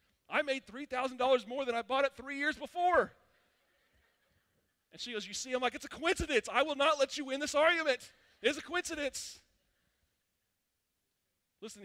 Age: 40-59